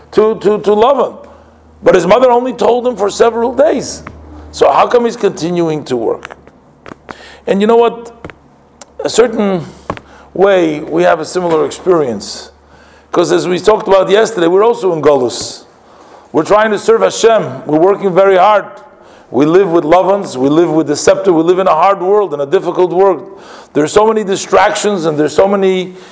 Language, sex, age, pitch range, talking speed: English, male, 50-69, 190-230 Hz, 180 wpm